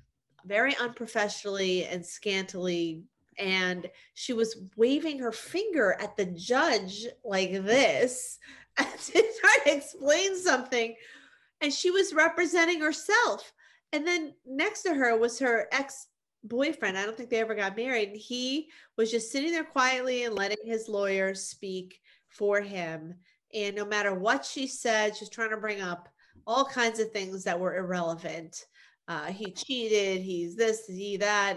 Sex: female